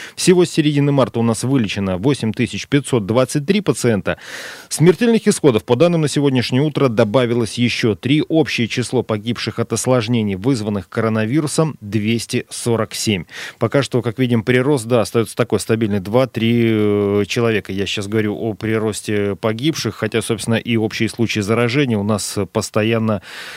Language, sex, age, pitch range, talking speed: Russian, male, 30-49, 110-145 Hz, 135 wpm